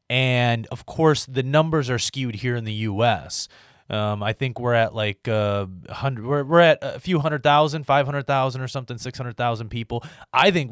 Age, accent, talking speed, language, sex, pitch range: 20-39, American, 185 wpm, English, male, 110-140 Hz